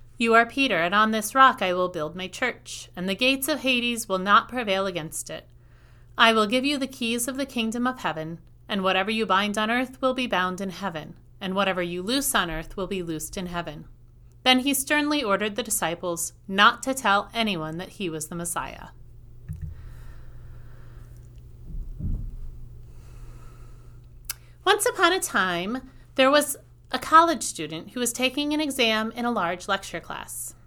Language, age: English, 30-49